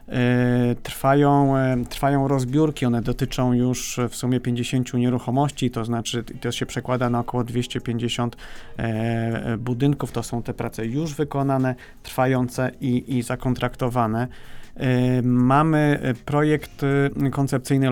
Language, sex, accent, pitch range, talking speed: Polish, male, native, 125-135 Hz, 105 wpm